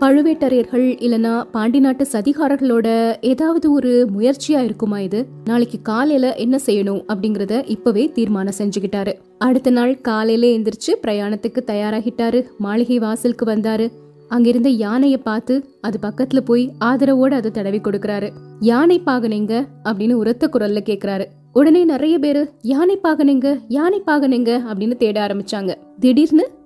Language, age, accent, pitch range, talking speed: Tamil, 20-39, native, 220-275 Hz, 120 wpm